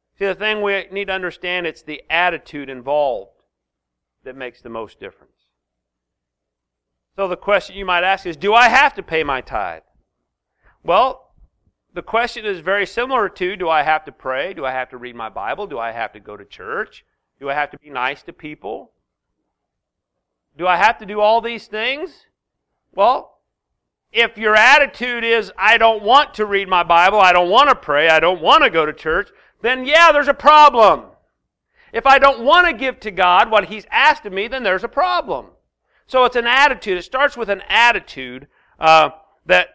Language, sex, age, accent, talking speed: English, male, 40-59, American, 195 wpm